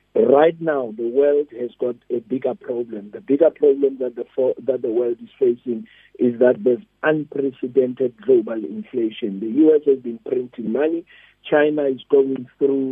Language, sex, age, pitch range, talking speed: English, male, 50-69, 125-155 Hz, 165 wpm